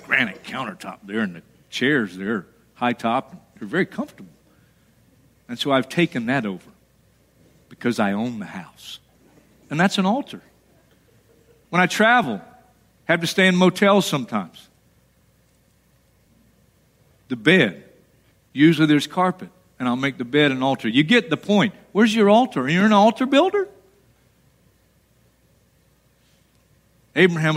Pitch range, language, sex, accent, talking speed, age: 145-220 Hz, English, male, American, 135 wpm, 50-69